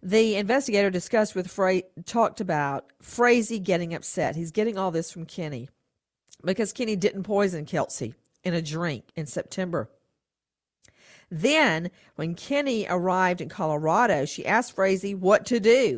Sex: female